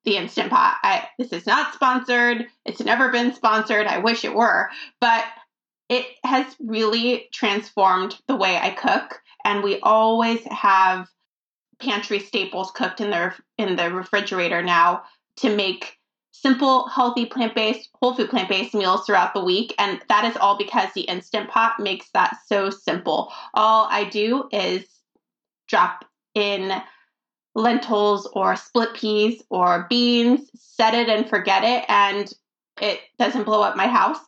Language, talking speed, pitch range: English, 145 wpm, 205-245 Hz